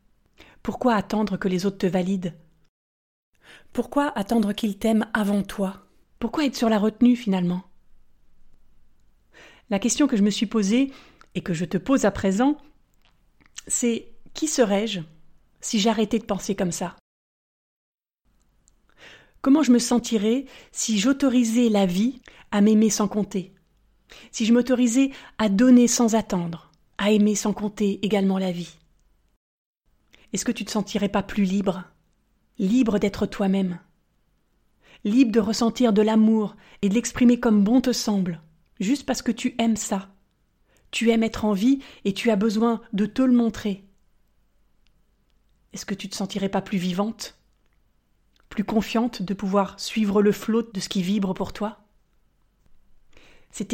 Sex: female